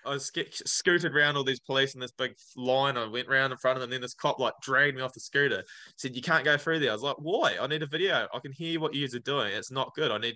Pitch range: 120-140 Hz